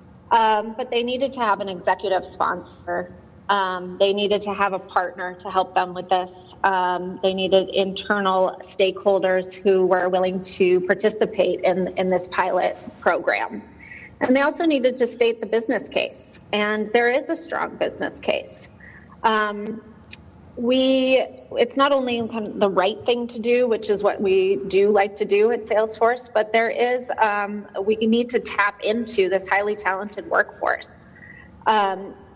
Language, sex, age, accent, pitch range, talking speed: English, female, 30-49, American, 190-220 Hz, 165 wpm